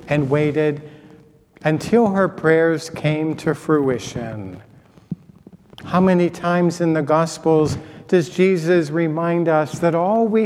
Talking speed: 120 wpm